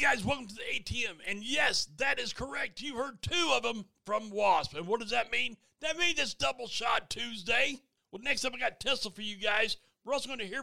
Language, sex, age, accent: English, male, 40-59, American